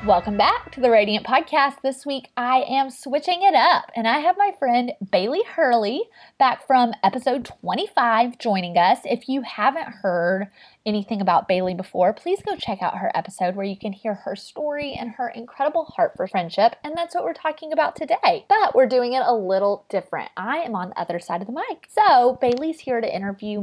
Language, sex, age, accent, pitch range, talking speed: English, female, 20-39, American, 200-280 Hz, 205 wpm